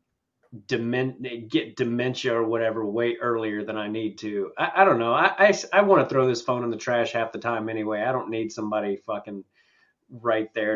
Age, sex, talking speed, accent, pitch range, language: 30-49, male, 195 wpm, American, 115-175 Hz, English